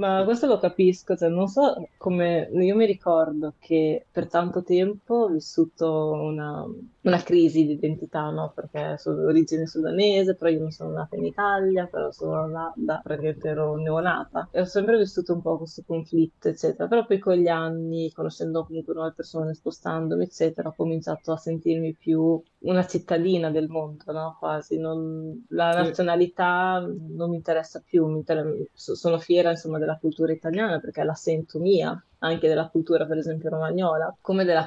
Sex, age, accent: female, 20-39, native